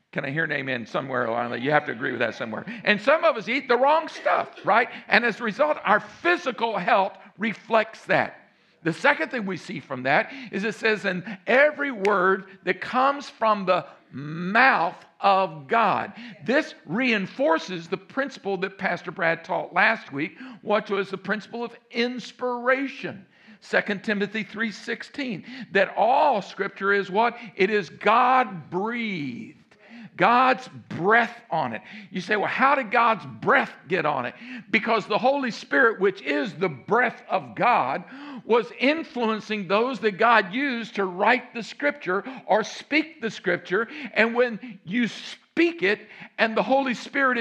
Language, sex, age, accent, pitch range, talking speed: English, male, 50-69, American, 195-250 Hz, 160 wpm